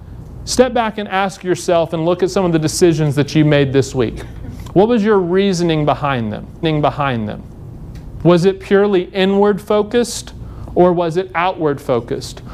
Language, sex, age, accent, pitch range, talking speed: English, male, 40-59, American, 150-195 Hz, 165 wpm